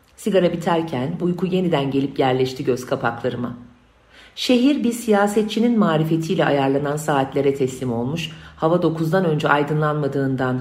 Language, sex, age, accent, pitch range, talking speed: Turkish, female, 40-59, native, 130-195 Hz, 115 wpm